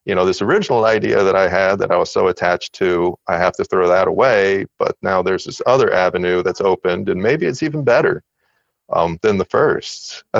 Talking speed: 220 wpm